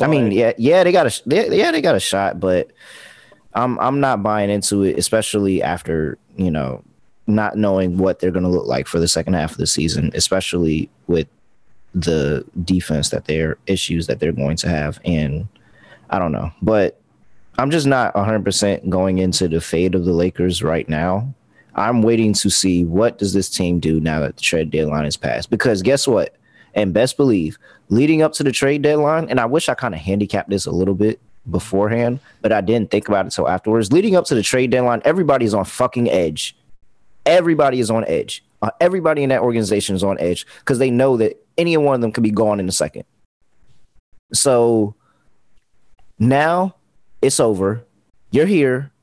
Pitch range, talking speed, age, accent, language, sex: 90-125 Hz, 195 wpm, 30-49, American, English, male